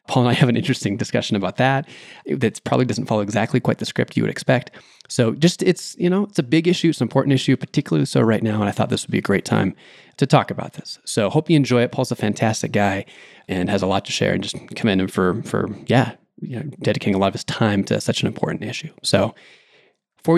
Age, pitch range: 20-39, 120-155 Hz